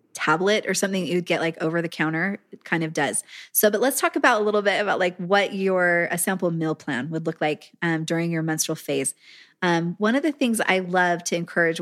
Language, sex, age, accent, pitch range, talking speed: English, female, 20-39, American, 165-200 Hz, 230 wpm